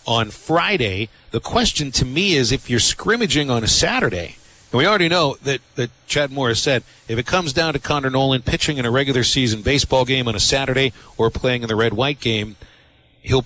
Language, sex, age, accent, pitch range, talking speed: English, male, 40-59, American, 110-140 Hz, 210 wpm